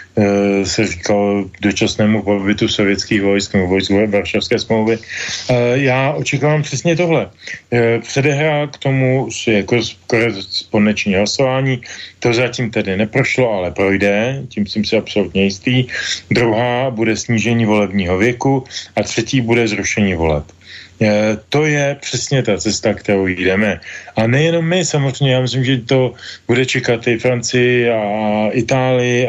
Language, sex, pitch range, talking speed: Slovak, male, 105-140 Hz, 125 wpm